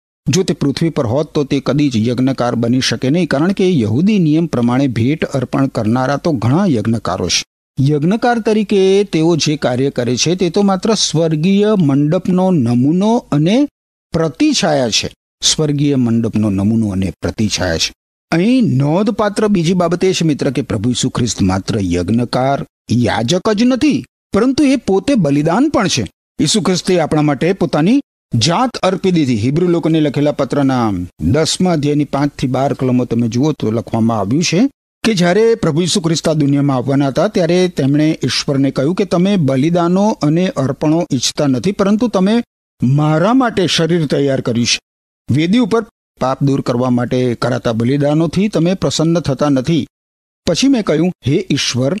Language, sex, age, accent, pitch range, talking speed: Gujarati, male, 50-69, native, 125-185 Hz, 135 wpm